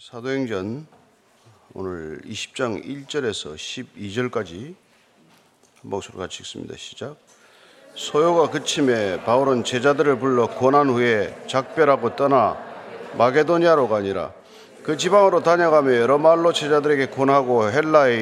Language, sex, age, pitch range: Korean, male, 40-59, 130-160 Hz